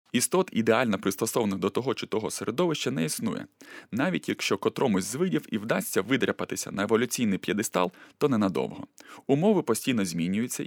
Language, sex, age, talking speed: Ukrainian, male, 20-39, 145 wpm